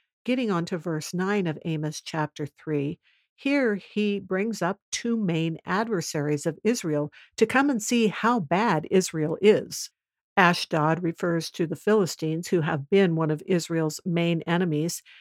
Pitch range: 160-195 Hz